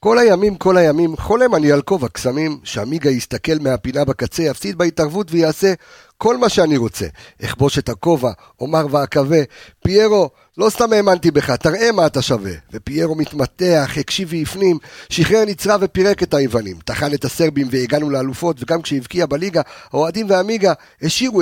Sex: male